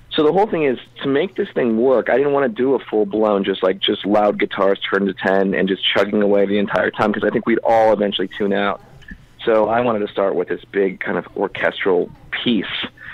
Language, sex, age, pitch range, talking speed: English, male, 40-59, 100-115 Hz, 235 wpm